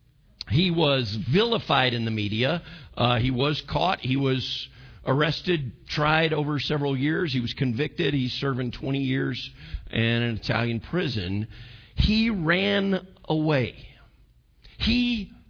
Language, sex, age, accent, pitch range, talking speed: English, male, 50-69, American, 105-165 Hz, 125 wpm